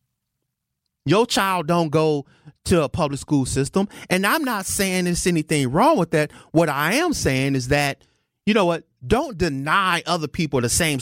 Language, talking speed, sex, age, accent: English, 180 wpm, male, 30-49, American